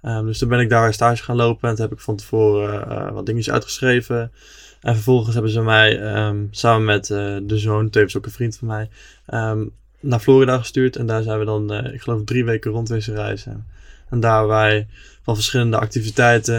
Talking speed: 205 wpm